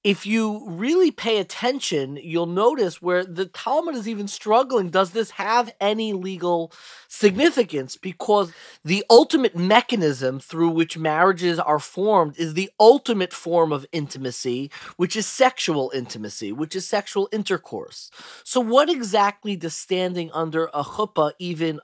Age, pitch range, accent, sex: 30-49, 160-220 Hz, American, male